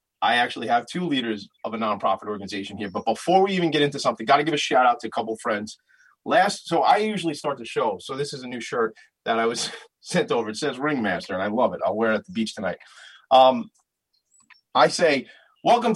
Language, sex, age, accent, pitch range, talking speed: English, male, 30-49, American, 115-165 Hz, 240 wpm